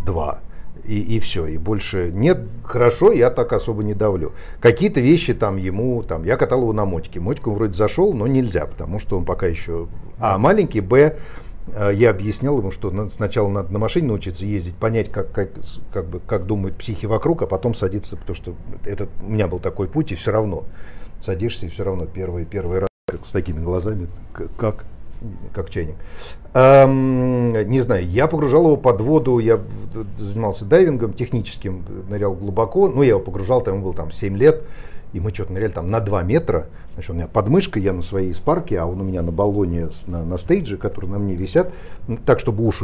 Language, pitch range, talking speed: Russian, 95-120 Hz, 200 wpm